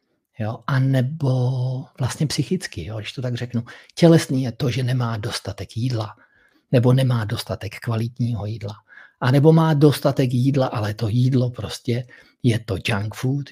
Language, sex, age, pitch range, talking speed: Czech, male, 50-69, 115-135 Hz, 140 wpm